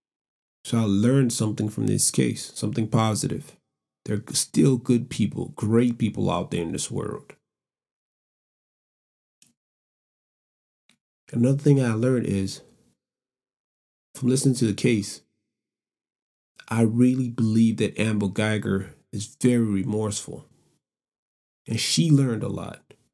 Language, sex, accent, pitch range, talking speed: English, male, American, 105-125 Hz, 115 wpm